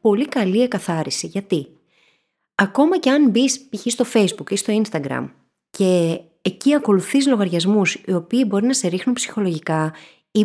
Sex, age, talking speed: female, 30-49, 150 wpm